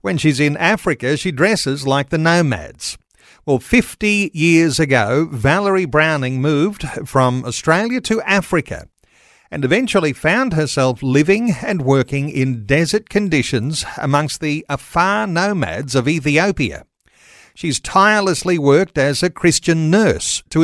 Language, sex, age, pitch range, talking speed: English, male, 50-69, 130-175 Hz, 130 wpm